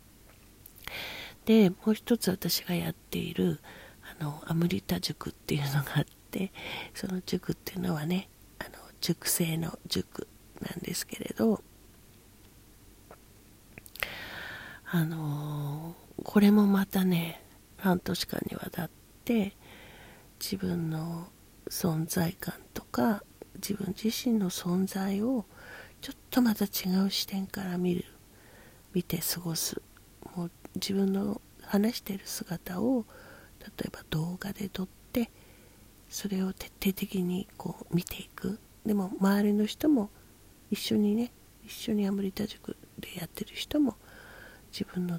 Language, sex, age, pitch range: Japanese, female, 40-59, 165-205 Hz